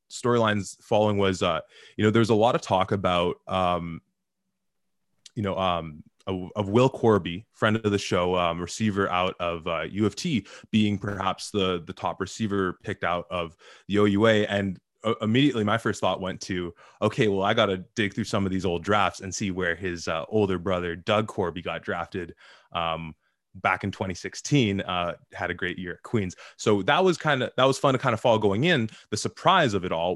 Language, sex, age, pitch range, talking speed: English, male, 20-39, 90-110 Hz, 200 wpm